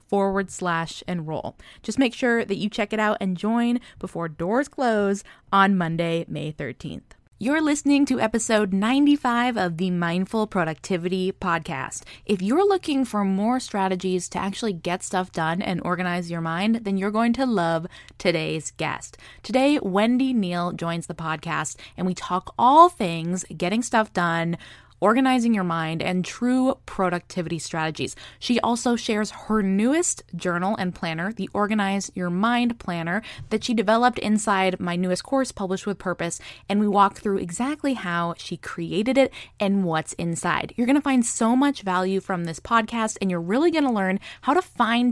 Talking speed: 170 wpm